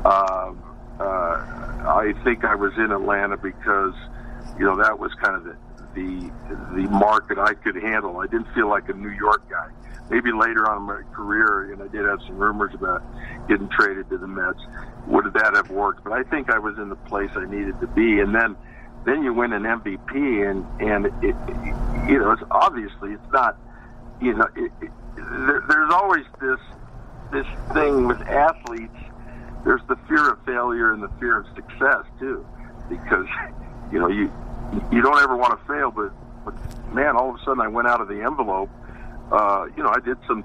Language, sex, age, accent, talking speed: English, male, 60-79, American, 200 wpm